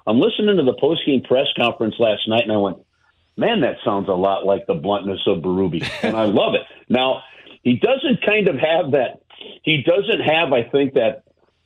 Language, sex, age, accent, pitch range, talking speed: English, male, 50-69, American, 100-140 Hz, 195 wpm